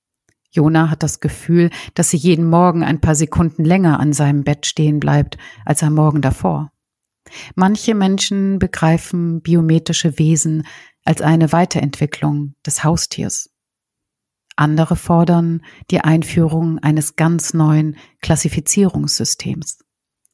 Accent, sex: German, female